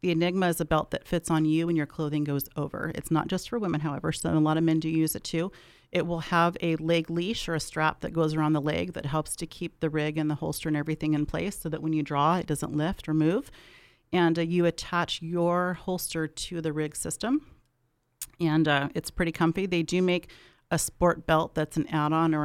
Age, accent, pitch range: 40-59, American, 155-170 Hz